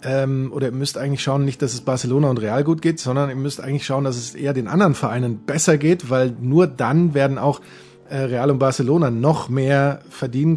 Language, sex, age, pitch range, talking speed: German, male, 30-49, 130-145 Hz, 210 wpm